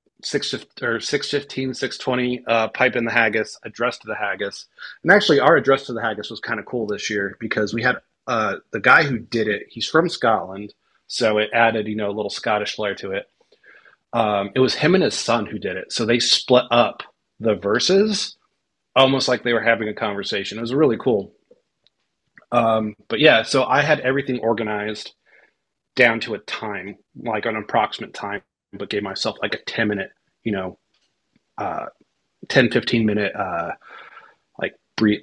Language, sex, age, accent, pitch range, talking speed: English, male, 30-49, American, 110-135 Hz, 185 wpm